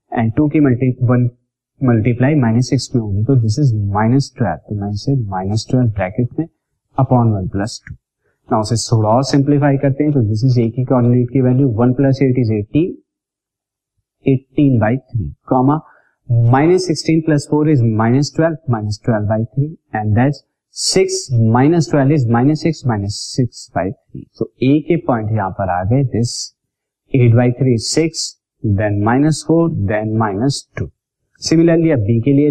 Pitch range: 115-145 Hz